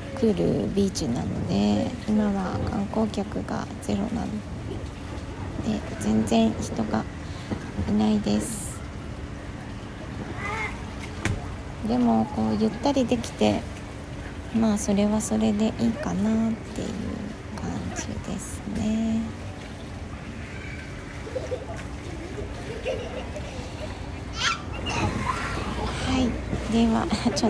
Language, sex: Japanese, female